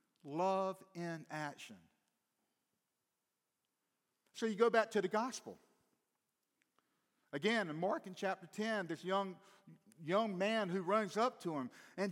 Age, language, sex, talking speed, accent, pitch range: 50-69, English, male, 130 wpm, American, 170-230 Hz